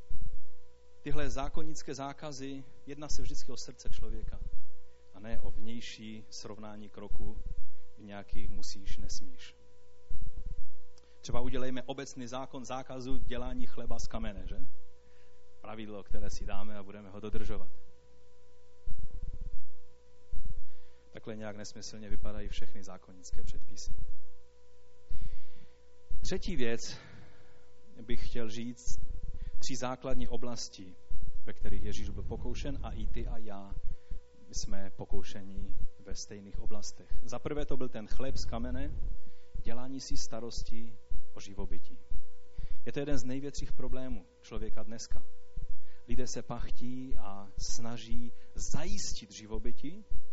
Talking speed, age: 115 wpm, 30-49